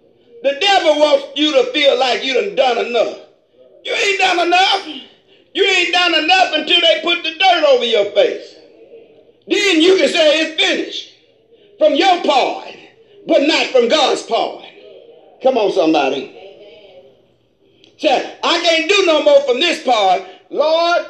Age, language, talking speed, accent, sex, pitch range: 50-69, English, 155 wpm, American, male, 255-410 Hz